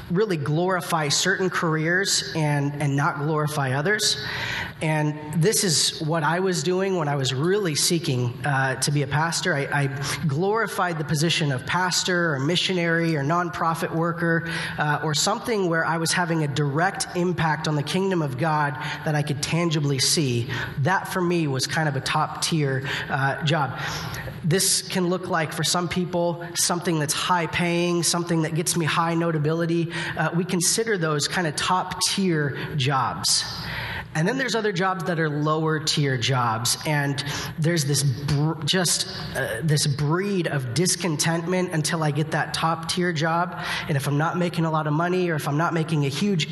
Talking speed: 180 wpm